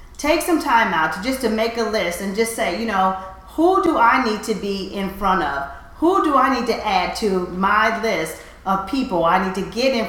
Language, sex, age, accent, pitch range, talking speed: English, female, 40-59, American, 185-225 Hz, 230 wpm